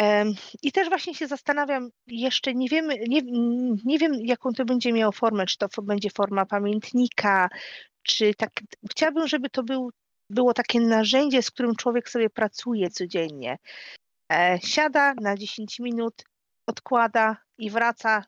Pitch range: 220-275 Hz